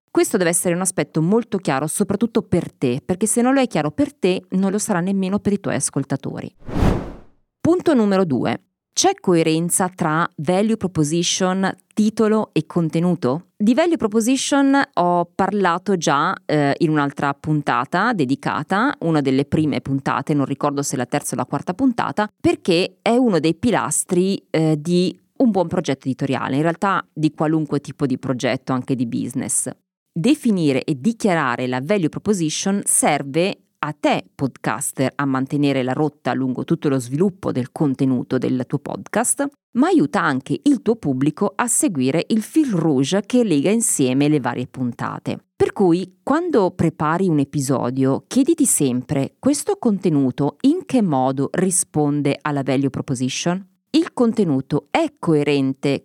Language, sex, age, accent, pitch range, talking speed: Italian, female, 30-49, native, 140-205 Hz, 155 wpm